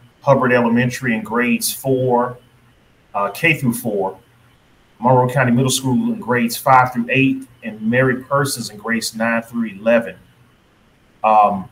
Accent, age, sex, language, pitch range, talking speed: American, 30-49, male, English, 120-135 Hz, 140 wpm